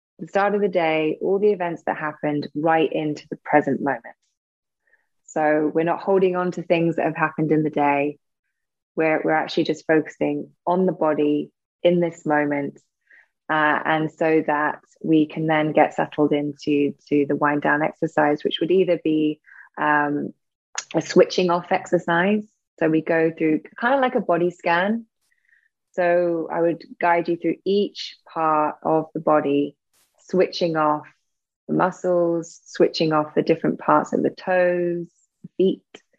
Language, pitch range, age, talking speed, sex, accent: English, 150-180 Hz, 20-39, 165 wpm, female, British